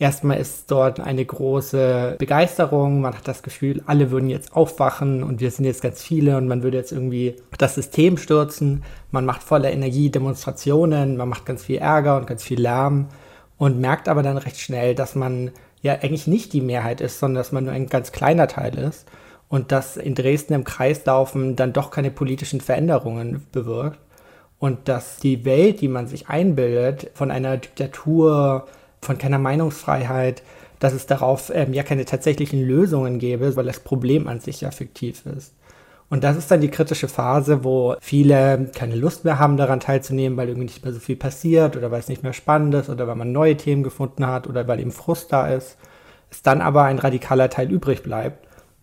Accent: German